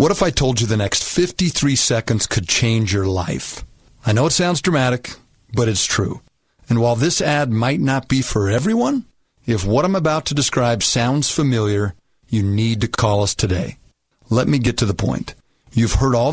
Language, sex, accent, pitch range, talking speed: English, male, American, 110-145 Hz, 195 wpm